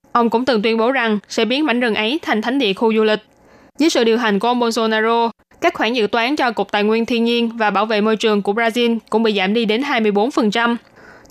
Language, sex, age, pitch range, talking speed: Vietnamese, female, 10-29, 220-255 Hz, 250 wpm